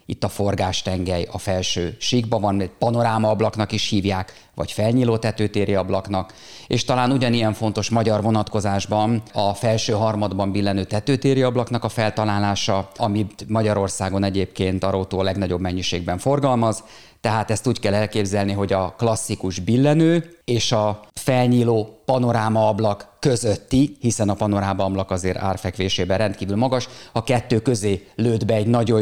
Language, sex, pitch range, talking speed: Hungarian, male, 95-110 Hz, 130 wpm